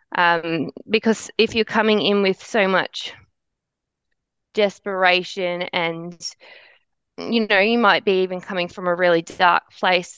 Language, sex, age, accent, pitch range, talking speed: English, female, 20-39, Australian, 185-225 Hz, 135 wpm